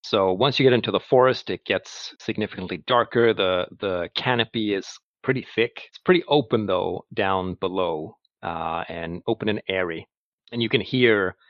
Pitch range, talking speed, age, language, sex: 90-115 Hz, 165 wpm, 40-59, English, male